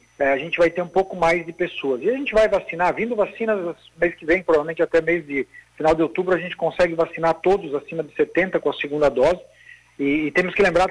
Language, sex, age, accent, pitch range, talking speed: Portuguese, male, 50-69, Brazilian, 160-200 Hz, 240 wpm